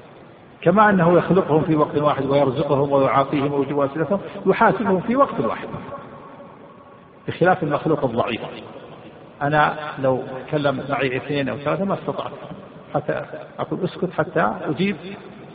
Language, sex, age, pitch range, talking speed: Arabic, male, 50-69, 135-180 Hz, 115 wpm